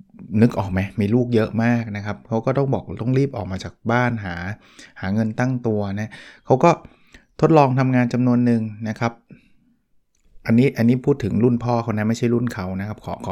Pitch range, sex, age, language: 105-125 Hz, male, 20-39, Thai